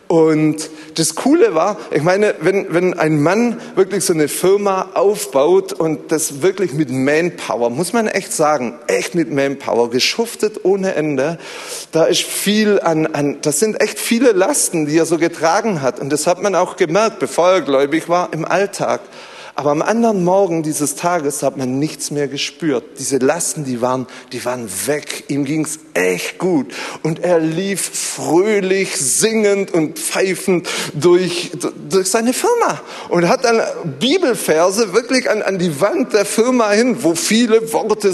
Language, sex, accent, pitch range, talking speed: German, male, German, 155-220 Hz, 165 wpm